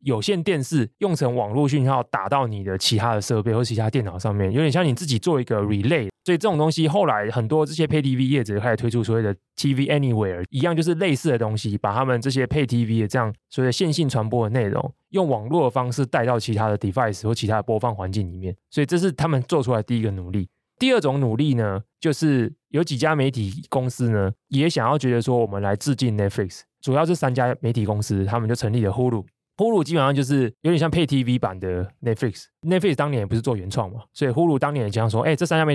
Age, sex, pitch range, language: 20-39, male, 110-145 Hz, Chinese